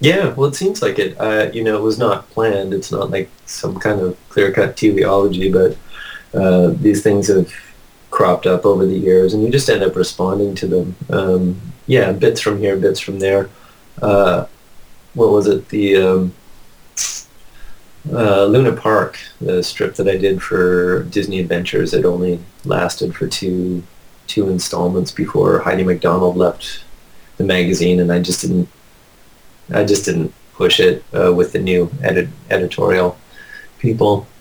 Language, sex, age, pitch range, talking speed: English, male, 30-49, 90-105 Hz, 165 wpm